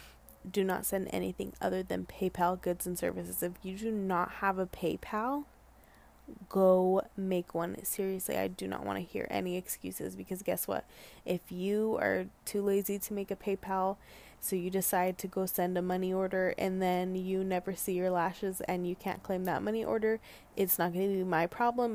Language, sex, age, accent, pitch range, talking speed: English, female, 20-39, American, 175-195 Hz, 195 wpm